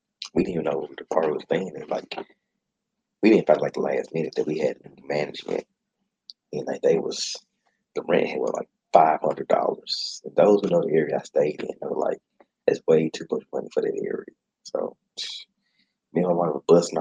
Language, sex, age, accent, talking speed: English, male, 30-49, American, 210 wpm